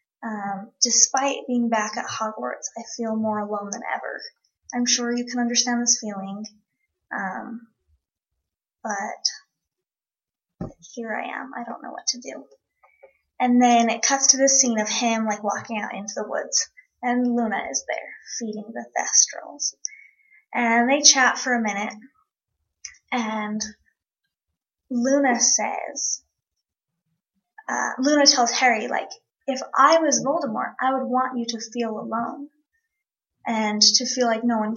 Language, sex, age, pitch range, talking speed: English, female, 20-39, 215-265 Hz, 145 wpm